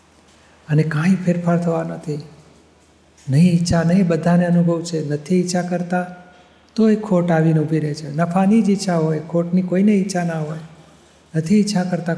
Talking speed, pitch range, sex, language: 160 wpm, 150-175 Hz, male, Gujarati